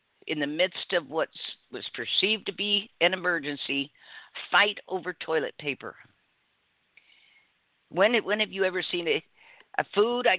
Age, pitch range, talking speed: 50-69, 155-200 Hz, 145 wpm